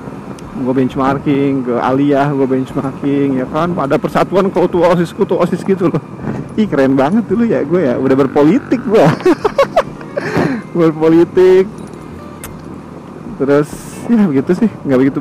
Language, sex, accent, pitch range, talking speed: Indonesian, male, native, 135-185 Hz, 130 wpm